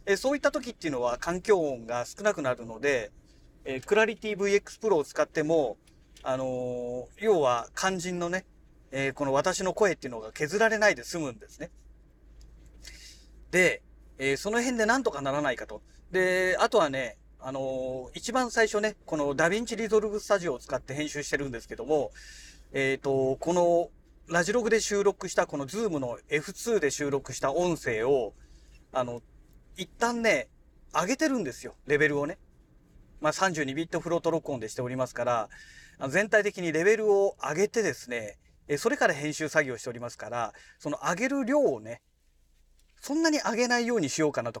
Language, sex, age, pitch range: Japanese, male, 40-59, 130-210 Hz